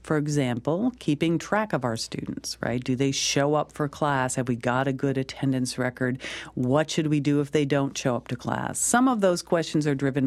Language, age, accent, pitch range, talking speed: English, 50-69, American, 130-175 Hz, 220 wpm